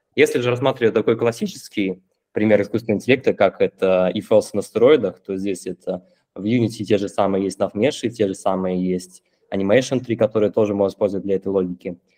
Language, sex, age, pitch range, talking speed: Russian, male, 20-39, 95-115 Hz, 180 wpm